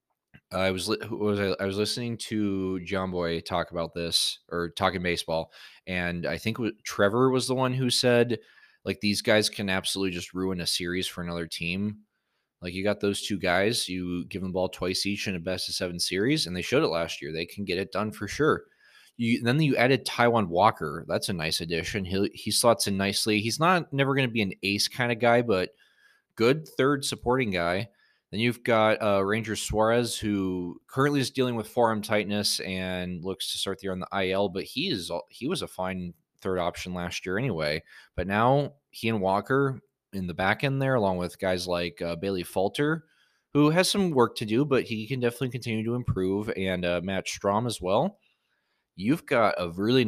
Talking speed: 205 wpm